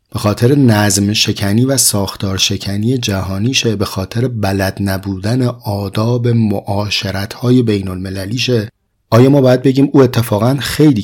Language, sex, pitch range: Persian, male, 95-120 Hz